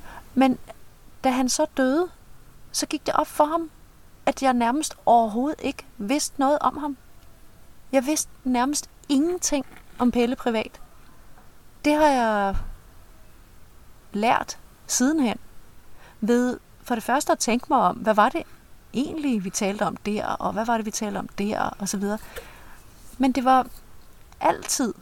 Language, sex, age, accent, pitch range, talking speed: Danish, female, 30-49, native, 215-280 Hz, 145 wpm